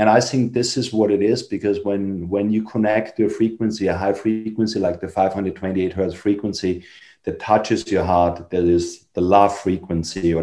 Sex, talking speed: male, 190 wpm